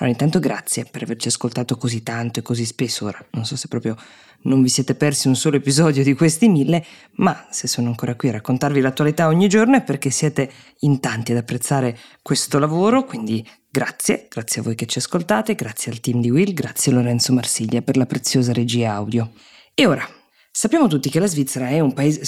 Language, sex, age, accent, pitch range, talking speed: Italian, female, 20-39, native, 125-155 Hz, 205 wpm